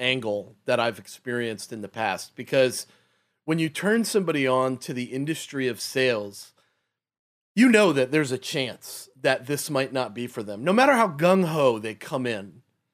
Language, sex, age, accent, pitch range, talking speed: English, male, 30-49, American, 125-165 Hz, 180 wpm